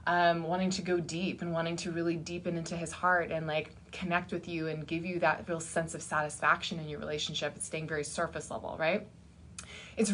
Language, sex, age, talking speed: English, female, 20-39, 215 wpm